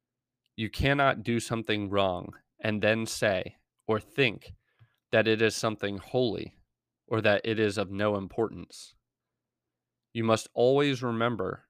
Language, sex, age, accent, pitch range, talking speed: English, male, 20-39, American, 105-125 Hz, 135 wpm